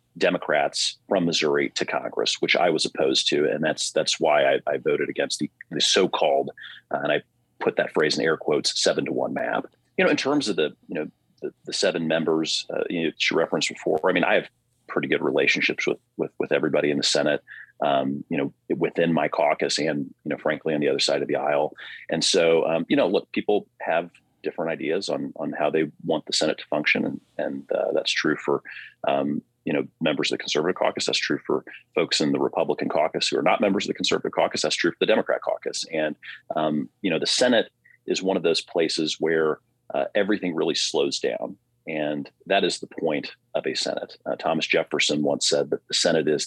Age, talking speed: 30-49, 220 wpm